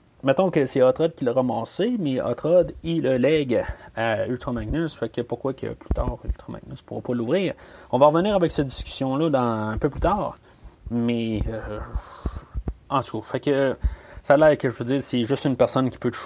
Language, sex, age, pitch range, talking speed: French, male, 30-49, 115-150 Hz, 210 wpm